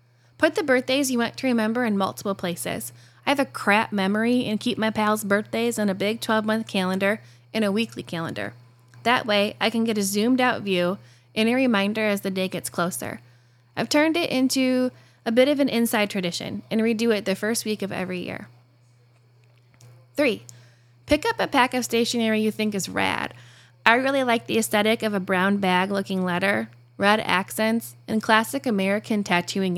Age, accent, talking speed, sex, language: 10-29, American, 185 wpm, female, English